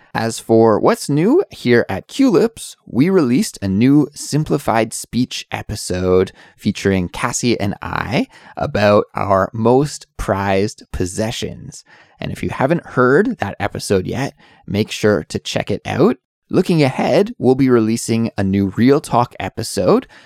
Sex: male